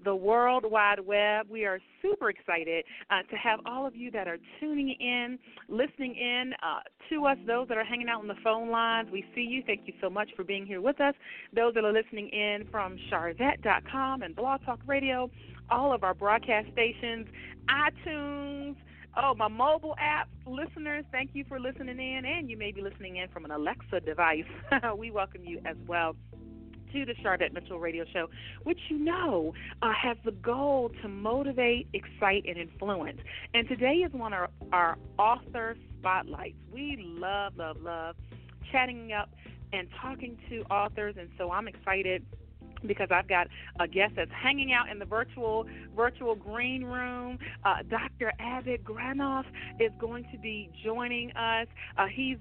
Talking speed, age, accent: 175 wpm, 40-59, American